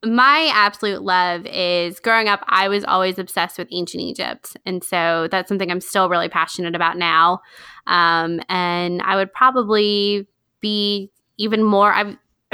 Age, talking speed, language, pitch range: 20-39, 150 wpm, English, 175-230 Hz